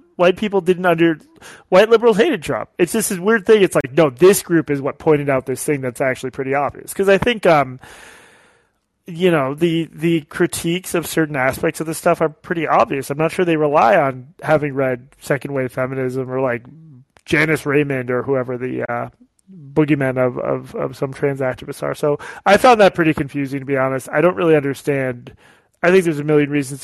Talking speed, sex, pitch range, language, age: 205 wpm, male, 130-165 Hz, English, 30-49